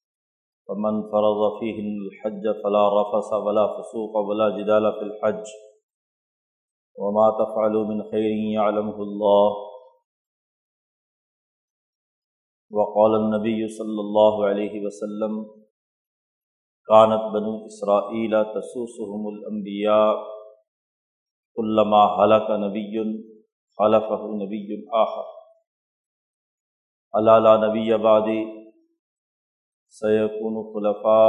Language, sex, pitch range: Urdu, male, 105-110 Hz